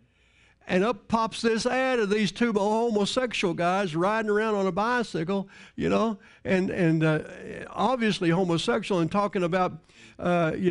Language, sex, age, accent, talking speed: English, male, 60-79, American, 150 wpm